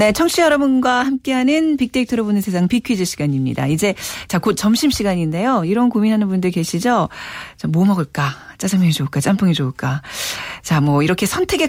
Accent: native